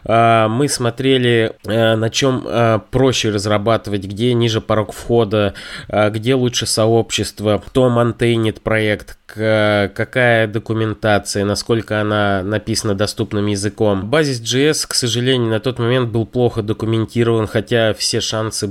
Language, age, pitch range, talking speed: Russian, 20-39, 105-120 Hz, 115 wpm